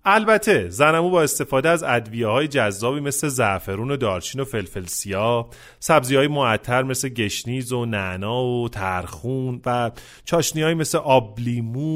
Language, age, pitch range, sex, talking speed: Persian, 30-49, 115-165 Hz, male, 145 wpm